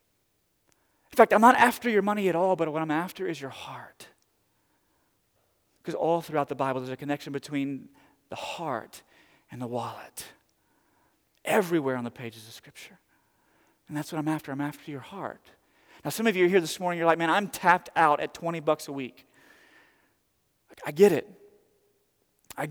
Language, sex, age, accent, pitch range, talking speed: English, male, 40-59, American, 145-195 Hz, 180 wpm